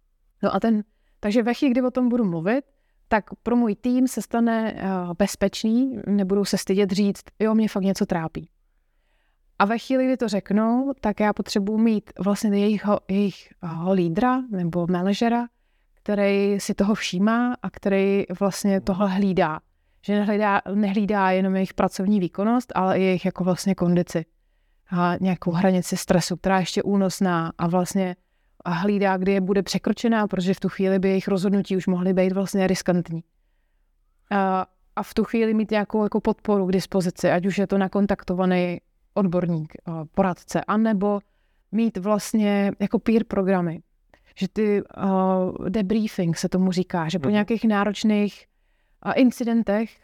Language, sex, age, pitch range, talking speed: Slovak, female, 30-49, 185-215 Hz, 150 wpm